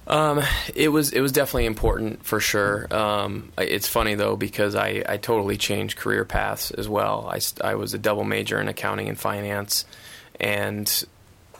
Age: 20-39